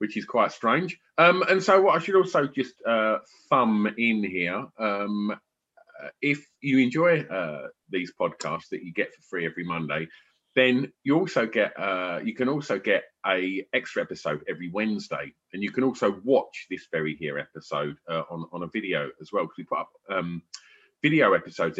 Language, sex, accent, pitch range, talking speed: English, male, British, 90-125 Hz, 185 wpm